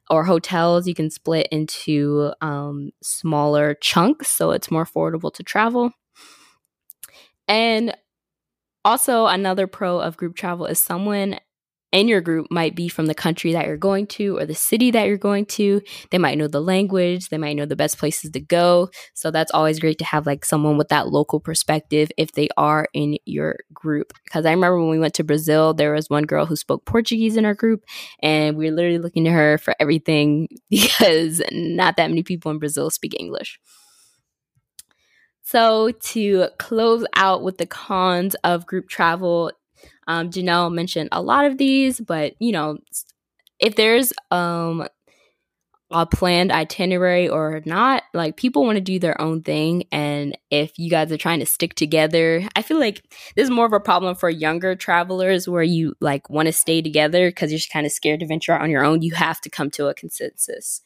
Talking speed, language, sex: 190 wpm, English, female